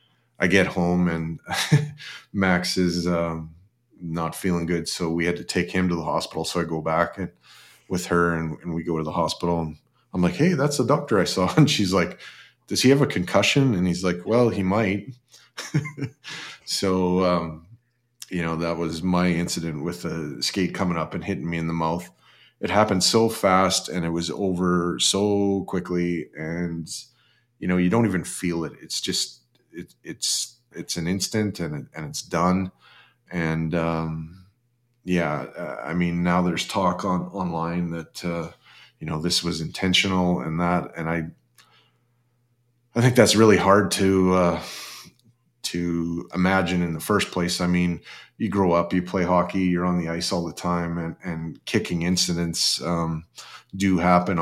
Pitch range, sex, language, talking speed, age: 85-95 Hz, male, English, 175 wpm, 30-49